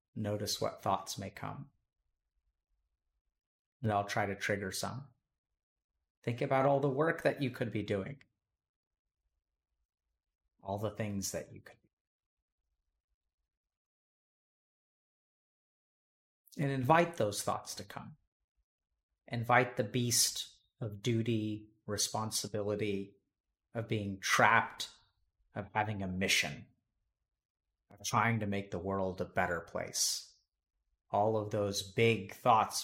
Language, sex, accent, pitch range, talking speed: English, male, American, 75-120 Hz, 110 wpm